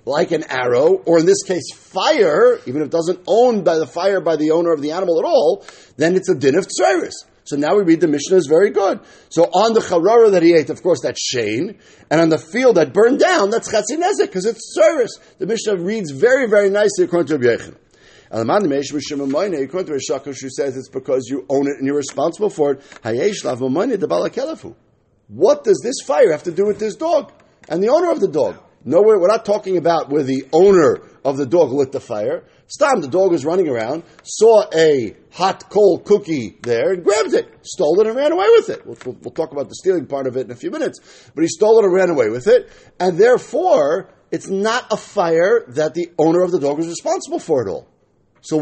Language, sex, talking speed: English, male, 230 wpm